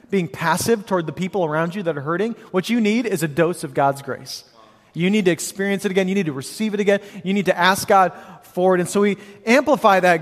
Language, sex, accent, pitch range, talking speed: English, male, American, 170-205 Hz, 255 wpm